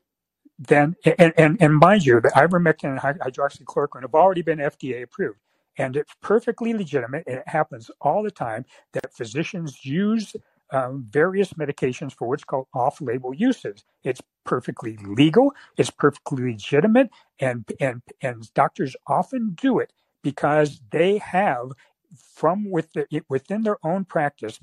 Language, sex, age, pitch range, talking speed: English, male, 60-79, 130-180 Hz, 140 wpm